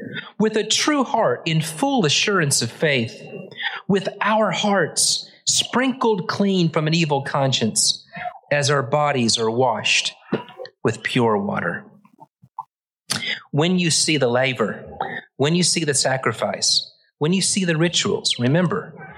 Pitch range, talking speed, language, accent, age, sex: 130-205 Hz, 130 wpm, English, American, 40-59, male